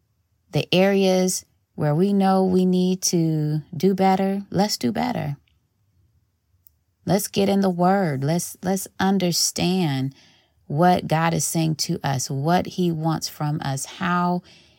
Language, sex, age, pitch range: English, female, 30-49, 120-170 Hz